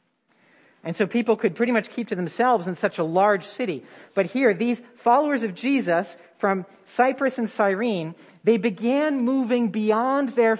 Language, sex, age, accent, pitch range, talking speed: English, male, 40-59, American, 190-250 Hz, 165 wpm